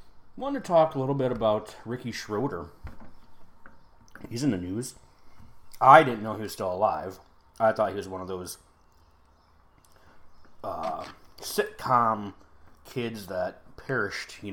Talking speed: 135 wpm